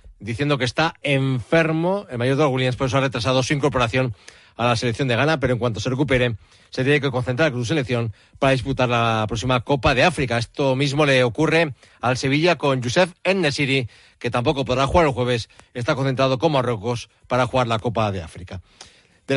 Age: 40-59